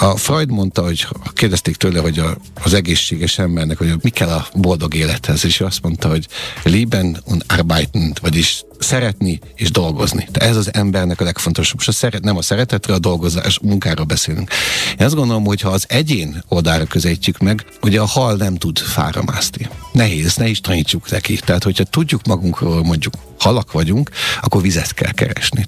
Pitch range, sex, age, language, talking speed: 85-115 Hz, male, 50-69, Hungarian, 185 wpm